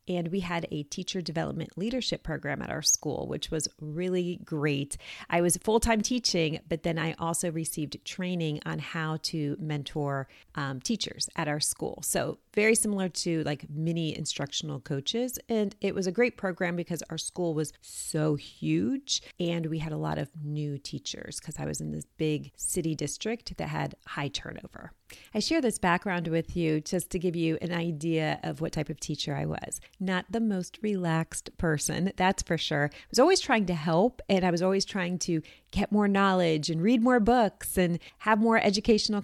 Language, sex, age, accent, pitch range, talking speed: English, female, 30-49, American, 155-195 Hz, 190 wpm